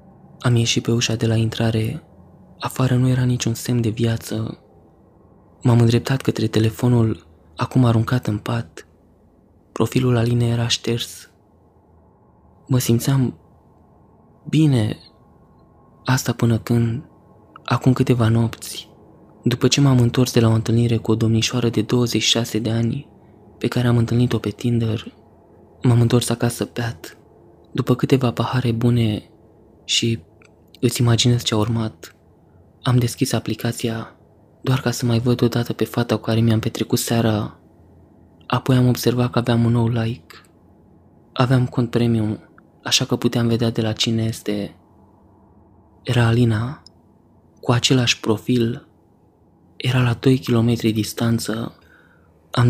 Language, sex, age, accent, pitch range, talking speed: Romanian, male, 20-39, native, 110-120 Hz, 135 wpm